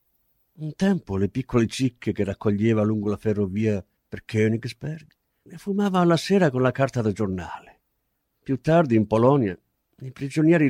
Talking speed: 150 wpm